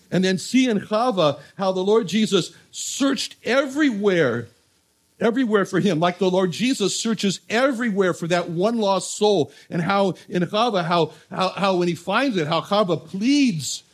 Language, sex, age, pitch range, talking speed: English, male, 60-79, 170-220 Hz, 170 wpm